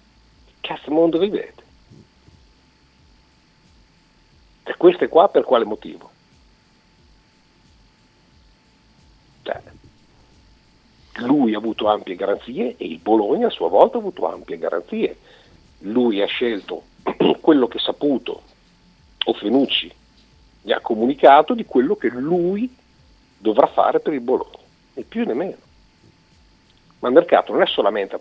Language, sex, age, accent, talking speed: Italian, male, 50-69, native, 120 wpm